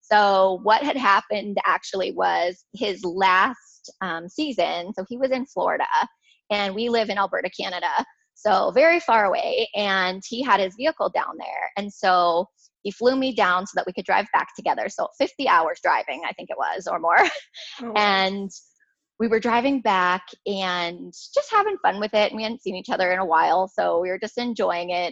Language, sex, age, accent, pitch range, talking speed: English, female, 20-39, American, 180-240 Hz, 195 wpm